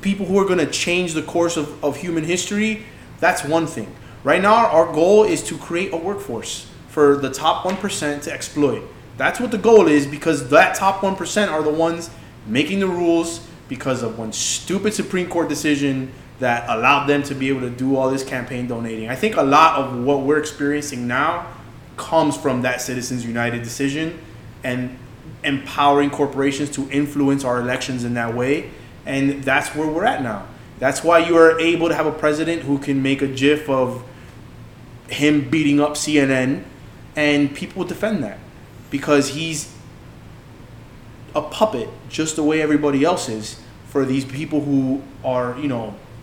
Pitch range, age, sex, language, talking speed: 125-160 Hz, 20-39, male, English, 175 wpm